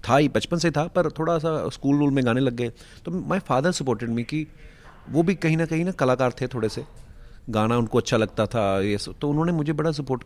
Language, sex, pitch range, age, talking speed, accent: Hindi, male, 110-145 Hz, 30-49, 240 wpm, native